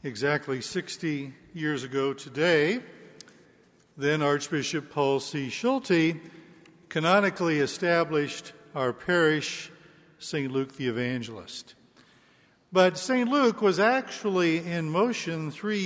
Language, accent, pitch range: English, American, 140-185 Hz